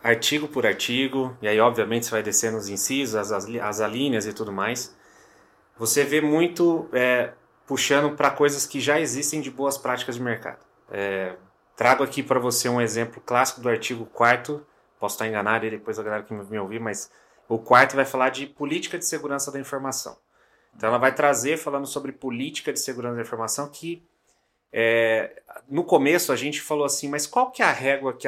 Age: 30-49